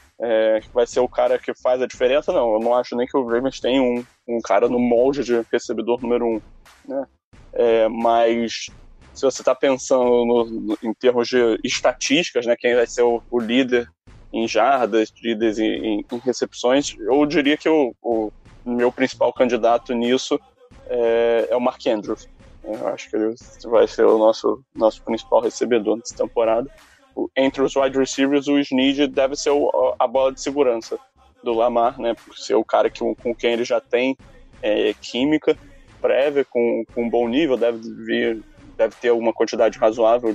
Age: 20-39